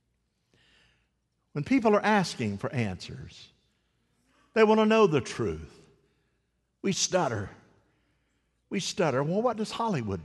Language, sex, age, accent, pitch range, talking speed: English, male, 50-69, American, 135-200 Hz, 115 wpm